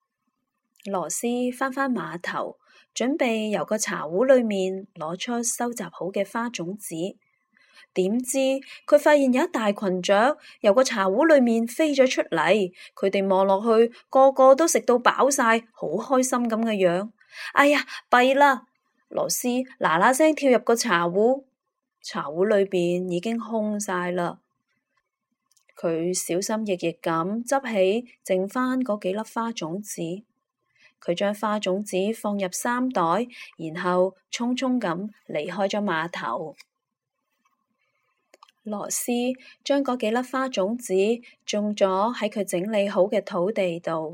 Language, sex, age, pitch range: Chinese, female, 20-39, 185-250 Hz